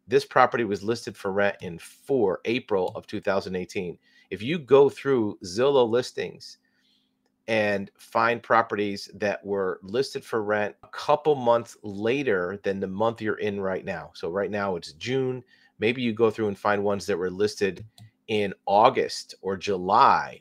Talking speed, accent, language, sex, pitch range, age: 160 wpm, American, English, male, 100-125 Hz, 40-59